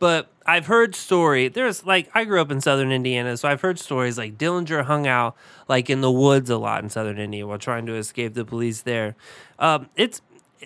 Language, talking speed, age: English, 215 wpm, 20-39